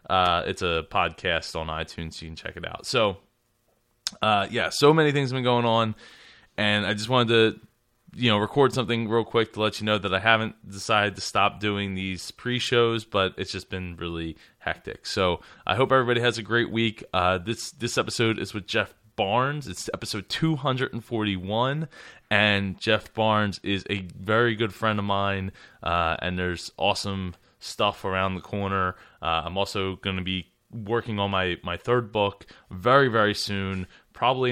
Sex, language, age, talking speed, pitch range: male, English, 20-39, 185 wpm, 90-115 Hz